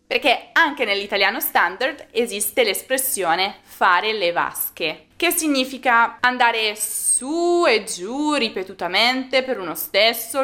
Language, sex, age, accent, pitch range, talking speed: Italian, female, 20-39, native, 180-245 Hz, 110 wpm